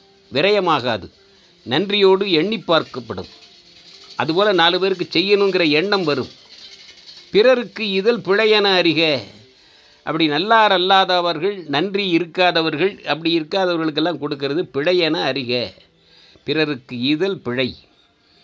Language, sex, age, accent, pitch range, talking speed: Tamil, male, 50-69, native, 135-195 Hz, 90 wpm